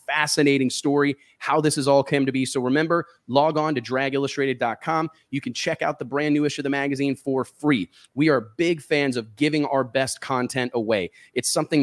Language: English